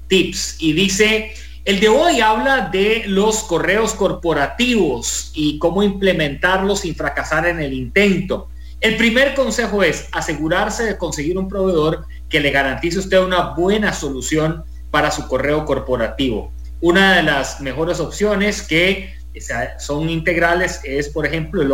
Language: English